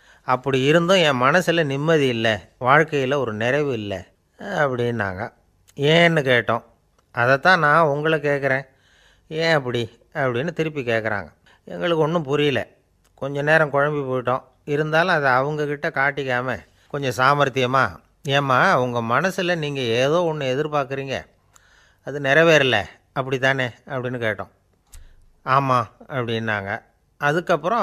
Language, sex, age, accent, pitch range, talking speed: Tamil, male, 30-49, native, 115-145 Hz, 110 wpm